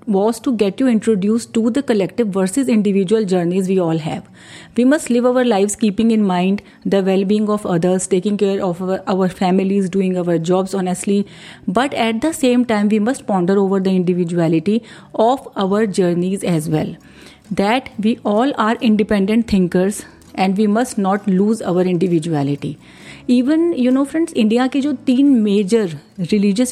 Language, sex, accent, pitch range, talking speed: Hindi, female, native, 190-235 Hz, 170 wpm